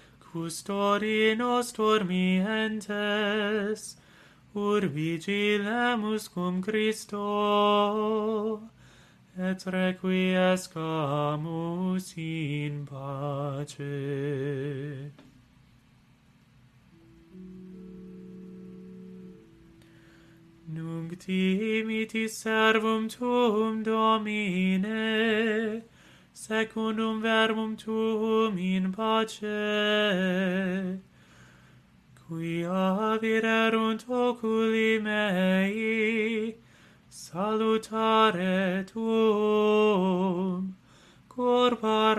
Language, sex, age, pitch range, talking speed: English, male, 30-49, 185-220 Hz, 40 wpm